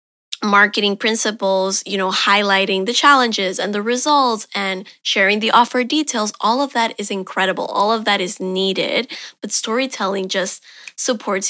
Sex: female